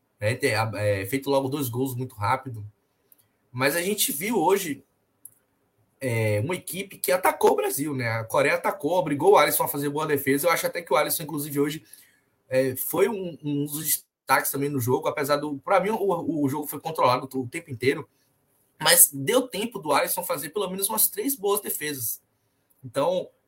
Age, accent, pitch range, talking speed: 20-39, Brazilian, 130-170 Hz, 190 wpm